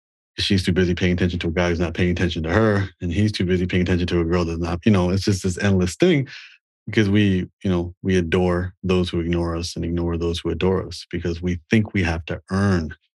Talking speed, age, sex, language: 250 wpm, 30-49, male, English